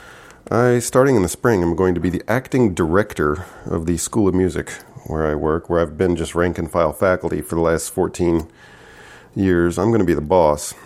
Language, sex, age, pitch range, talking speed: English, male, 40-59, 75-95 Hz, 205 wpm